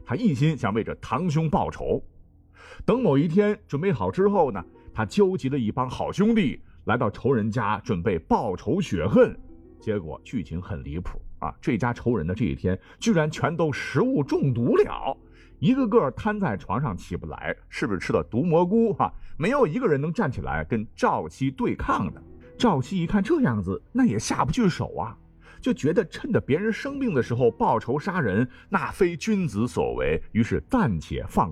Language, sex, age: Chinese, male, 50-69